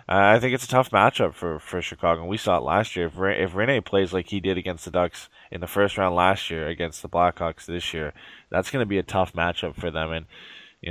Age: 20-39